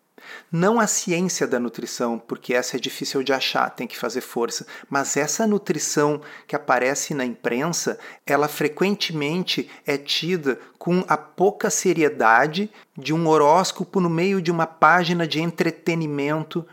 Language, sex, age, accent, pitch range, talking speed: Portuguese, male, 40-59, Brazilian, 140-180 Hz, 145 wpm